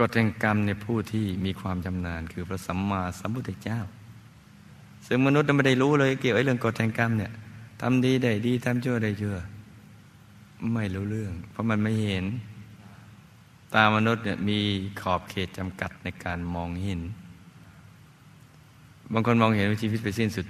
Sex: male